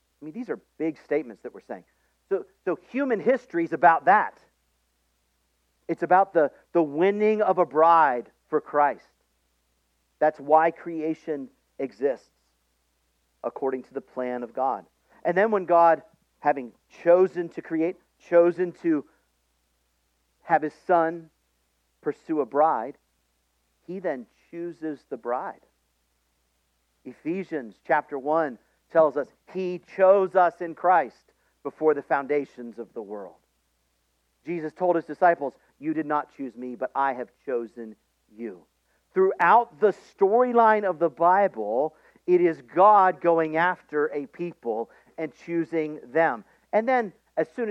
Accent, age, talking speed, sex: American, 50-69, 135 wpm, male